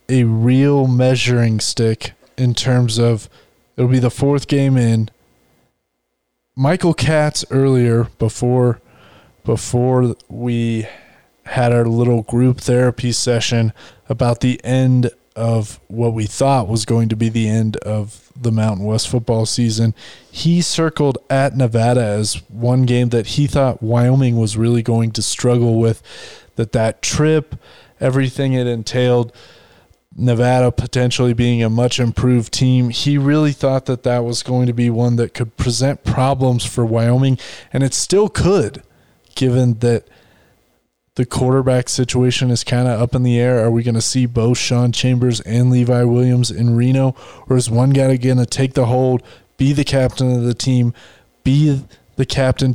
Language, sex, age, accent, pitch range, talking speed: English, male, 20-39, American, 115-130 Hz, 155 wpm